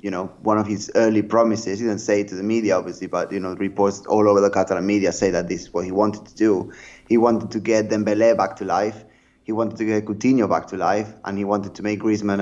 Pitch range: 105-115 Hz